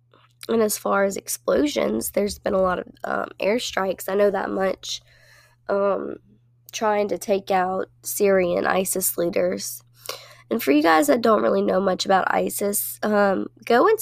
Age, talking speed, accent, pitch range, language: 20-39, 165 wpm, American, 120-200 Hz, English